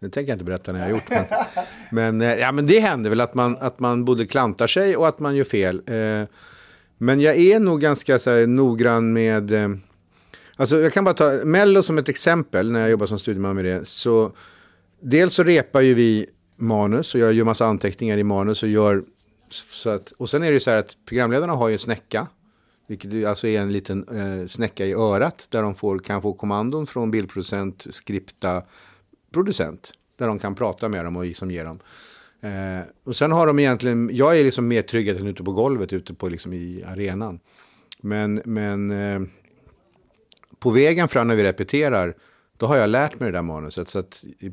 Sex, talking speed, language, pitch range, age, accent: male, 205 wpm, English, 95-125 Hz, 50-69, Swedish